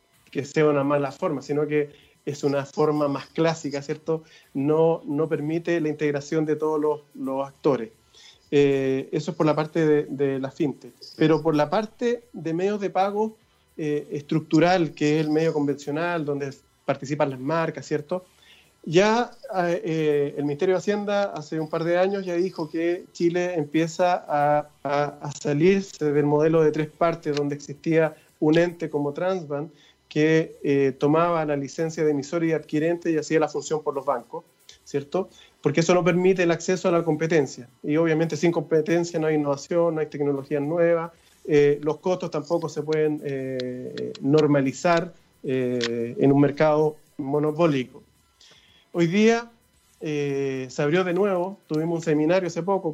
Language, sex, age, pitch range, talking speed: Spanish, male, 30-49, 145-170 Hz, 165 wpm